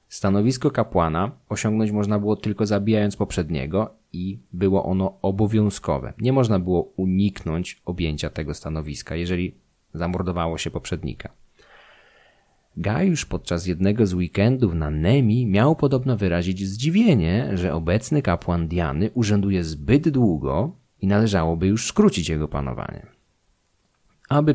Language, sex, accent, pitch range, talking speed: Polish, male, native, 85-115 Hz, 115 wpm